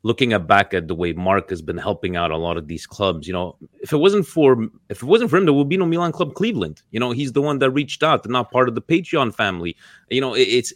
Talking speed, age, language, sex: 280 wpm, 30-49, Italian, male